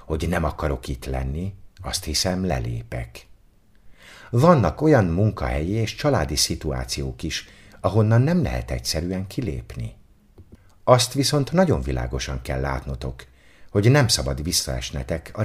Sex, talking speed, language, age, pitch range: male, 120 wpm, Hungarian, 60-79, 70-105 Hz